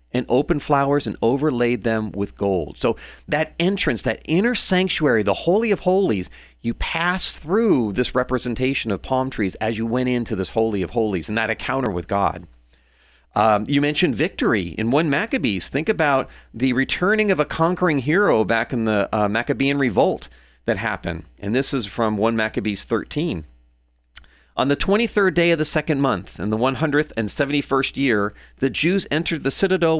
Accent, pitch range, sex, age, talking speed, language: American, 110-155 Hz, male, 40-59, 170 wpm, English